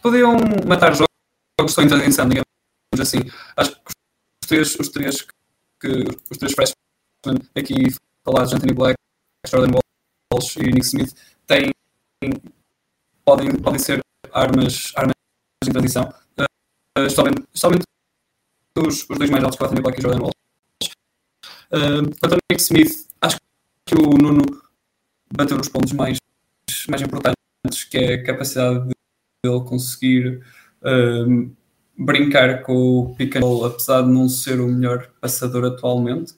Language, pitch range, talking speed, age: Portuguese, 130-150 Hz, 135 wpm, 20-39